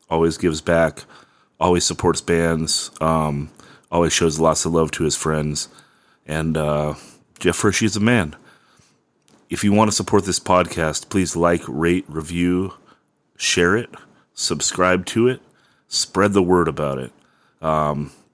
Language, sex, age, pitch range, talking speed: English, male, 30-49, 80-90 Hz, 140 wpm